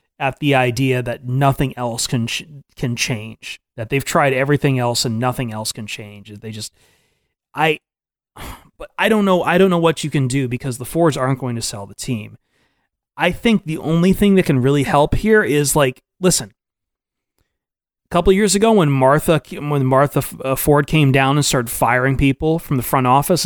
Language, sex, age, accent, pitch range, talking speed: English, male, 30-49, American, 125-160 Hz, 190 wpm